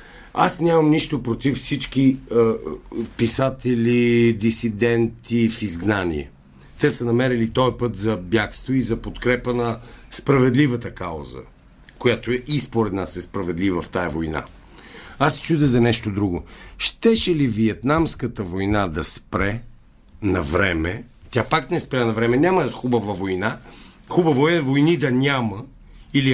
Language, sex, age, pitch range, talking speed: Bulgarian, male, 50-69, 100-130 Hz, 140 wpm